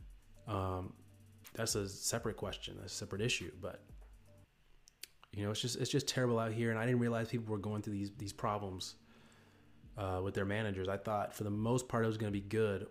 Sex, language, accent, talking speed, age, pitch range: male, English, American, 205 wpm, 20-39, 100-120 Hz